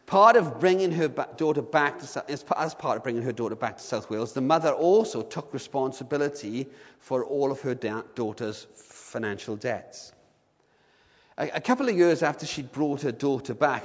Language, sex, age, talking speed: English, male, 40-59, 180 wpm